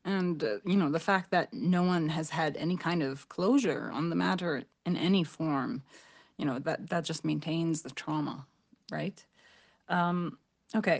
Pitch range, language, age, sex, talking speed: 165-220 Hz, English, 30-49, female, 175 wpm